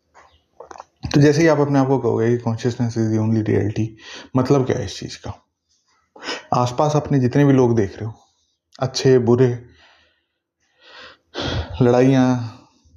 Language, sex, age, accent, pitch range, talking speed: Hindi, male, 20-39, native, 115-135 Hz, 150 wpm